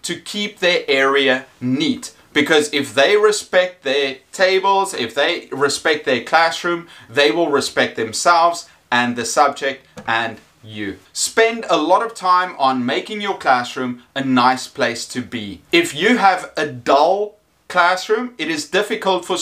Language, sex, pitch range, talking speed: English, male, 135-190 Hz, 150 wpm